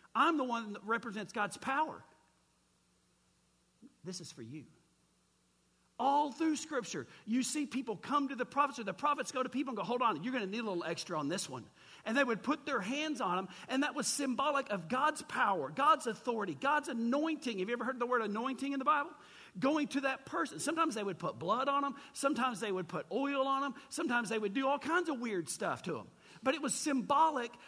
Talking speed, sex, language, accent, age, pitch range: 225 wpm, male, English, American, 50-69, 195-275 Hz